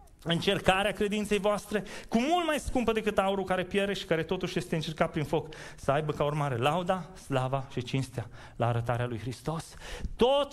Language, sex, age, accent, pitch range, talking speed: Romanian, male, 30-49, native, 140-220 Hz, 175 wpm